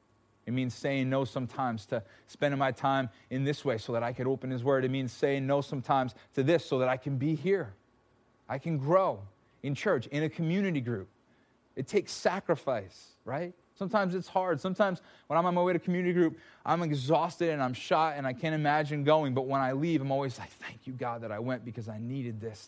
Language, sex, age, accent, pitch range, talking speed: English, male, 30-49, American, 120-160 Hz, 220 wpm